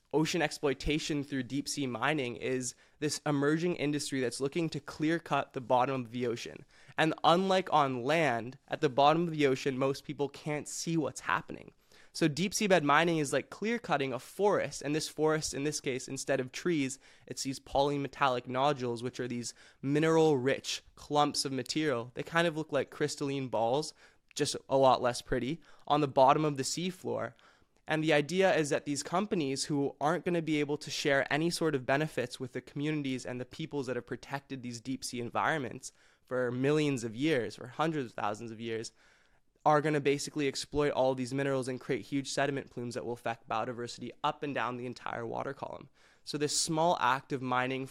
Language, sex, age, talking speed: English, male, 20-39, 200 wpm